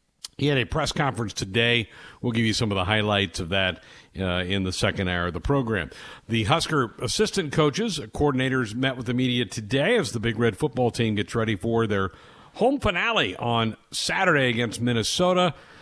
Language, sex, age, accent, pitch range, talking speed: English, male, 50-69, American, 100-135 Hz, 185 wpm